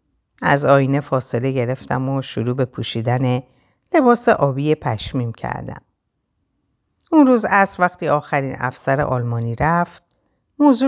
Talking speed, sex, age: 115 wpm, female, 50-69